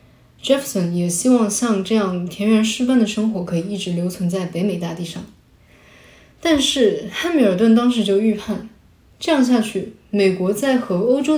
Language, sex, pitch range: Chinese, female, 190-245 Hz